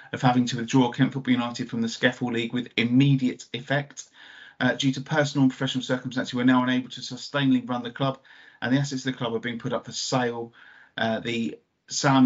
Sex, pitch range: male, 115-130 Hz